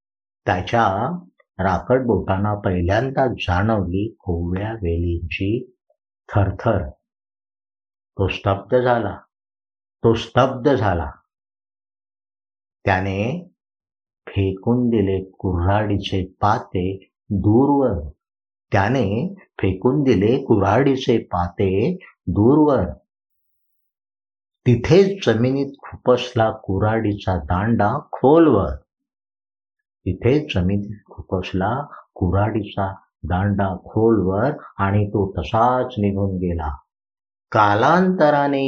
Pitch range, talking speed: 90-120 Hz, 50 wpm